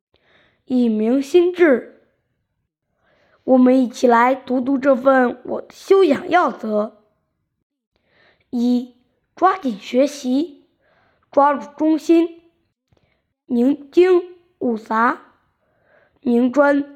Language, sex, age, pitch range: Chinese, female, 20-39, 245-305 Hz